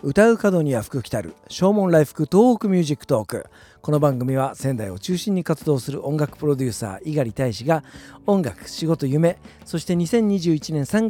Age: 40-59